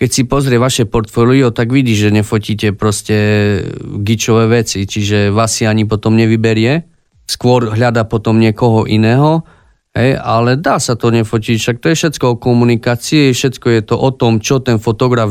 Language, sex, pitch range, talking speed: Slovak, male, 110-130 Hz, 170 wpm